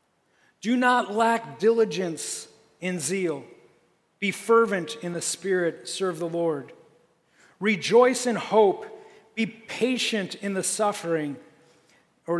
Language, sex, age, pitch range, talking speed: English, male, 40-59, 185-225 Hz, 110 wpm